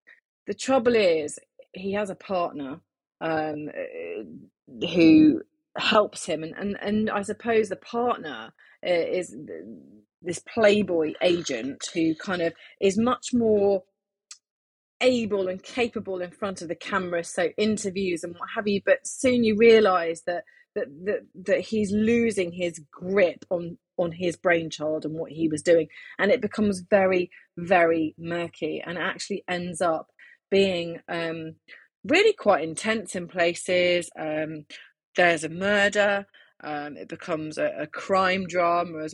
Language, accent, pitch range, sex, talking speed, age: English, British, 160-205 Hz, female, 145 wpm, 30-49